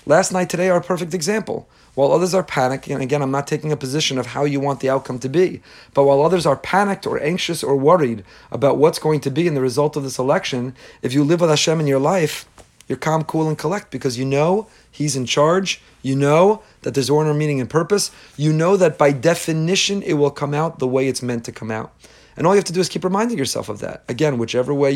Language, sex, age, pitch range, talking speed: English, male, 40-59, 130-165 Hz, 250 wpm